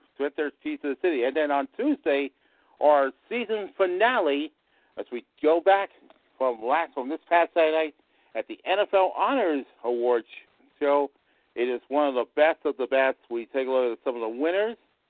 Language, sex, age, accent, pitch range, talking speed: English, male, 50-69, American, 130-185 Hz, 190 wpm